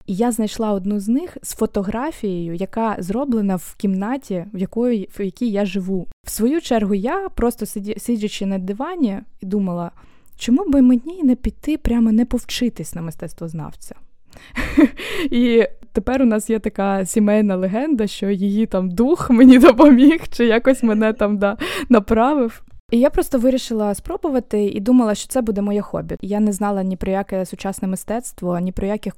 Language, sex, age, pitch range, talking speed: Ukrainian, female, 20-39, 195-240 Hz, 165 wpm